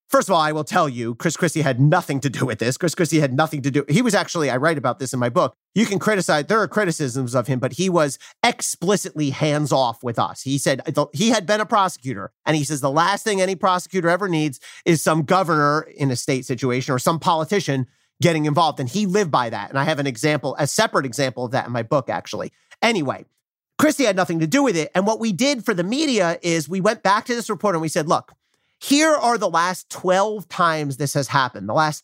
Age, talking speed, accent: 40-59, 245 wpm, American